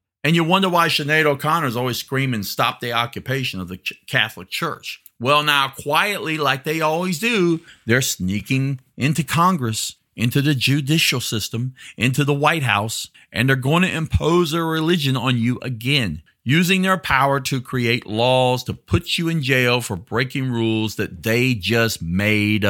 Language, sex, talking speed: English, male, 170 wpm